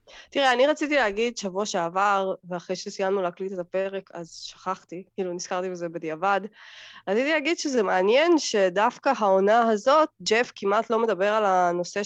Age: 20-39